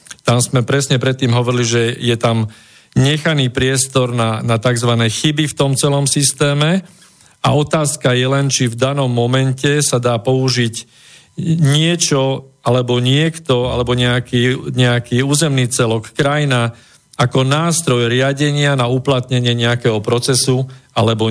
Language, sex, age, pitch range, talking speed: Slovak, male, 40-59, 120-140 Hz, 130 wpm